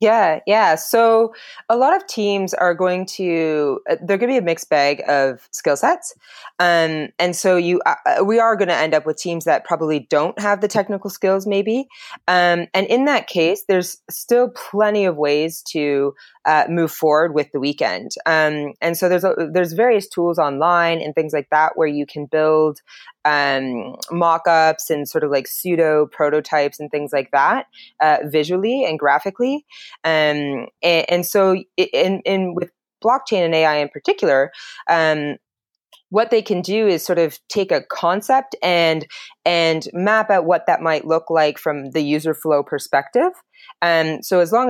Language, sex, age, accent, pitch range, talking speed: English, female, 20-39, American, 155-200 Hz, 175 wpm